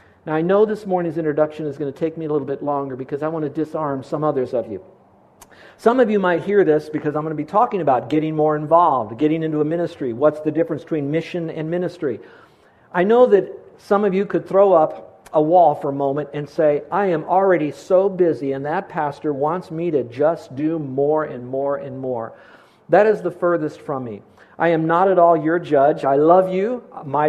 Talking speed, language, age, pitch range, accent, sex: 225 wpm, English, 50-69, 150-185 Hz, American, male